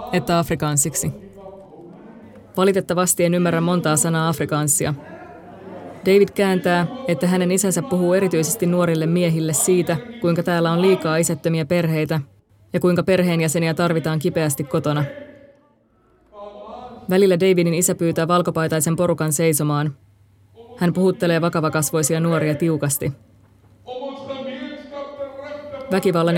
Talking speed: 100 wpm